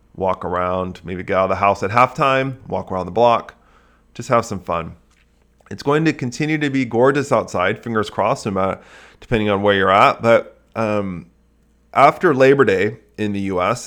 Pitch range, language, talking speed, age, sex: 95-115 Hz, English, 185 wpm, 30-49, male